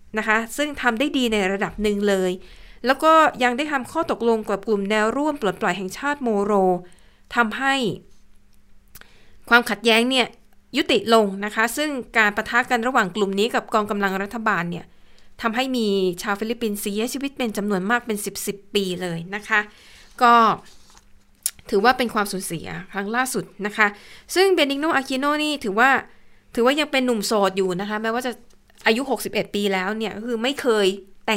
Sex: female